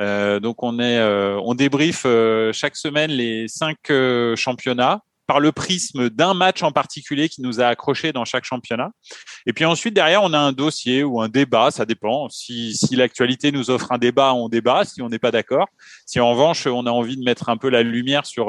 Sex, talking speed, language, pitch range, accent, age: male, 220 wpm, French, 115-145 Hz, French, 30-49